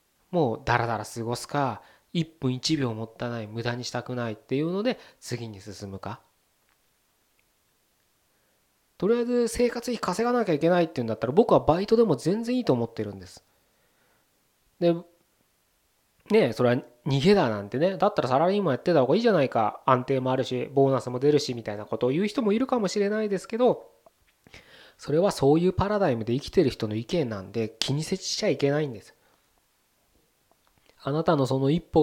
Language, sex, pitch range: Japanese, male, 120-180 Hz